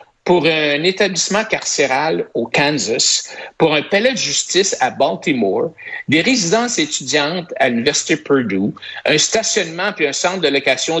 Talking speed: 140 wpm